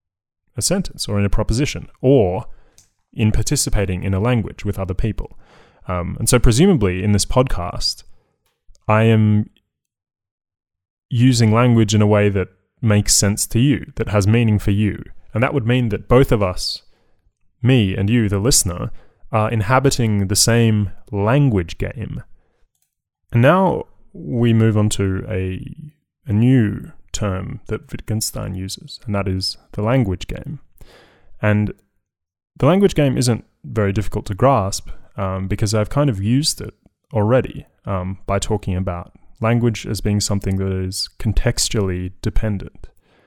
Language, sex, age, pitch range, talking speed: English, male, 20-39, 95-120 Hz, 145 wpm